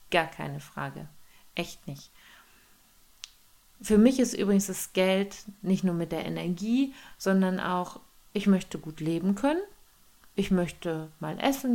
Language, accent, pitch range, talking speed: German, German, 160-200 Hz, 140 wpm